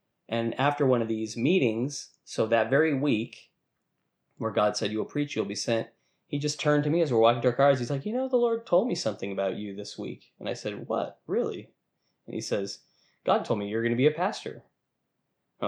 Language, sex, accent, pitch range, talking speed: English, male, American, 110-140 Hz, 235 wpm